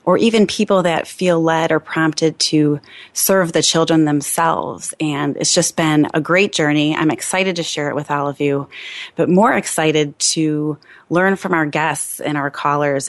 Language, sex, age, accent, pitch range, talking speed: English, female, 30-49, American, 150-170 Hz, 185 wpm